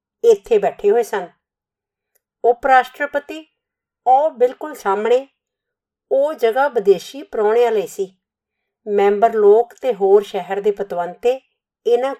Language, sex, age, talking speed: Punjabi, female, 50-69, 110 wpm